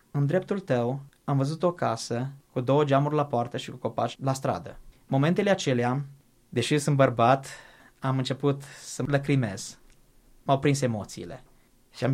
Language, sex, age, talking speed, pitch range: Romanian, male, 20-39, 155 wpm, 125-155 Hz